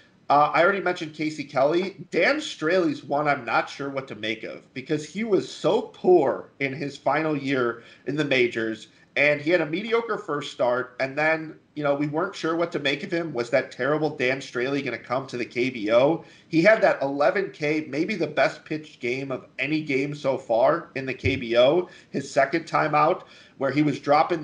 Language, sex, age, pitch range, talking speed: English, male, 30-49, 135-165 Hz, 200 wpm